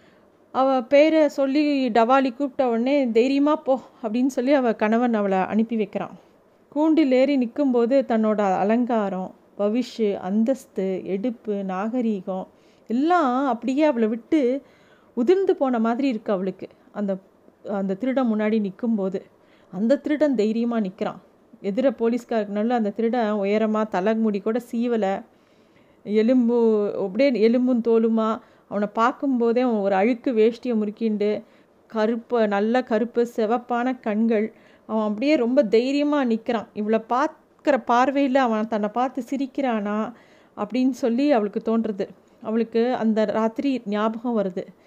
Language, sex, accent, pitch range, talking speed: Tamil, female, native, 215-260 Hz, 115 wpm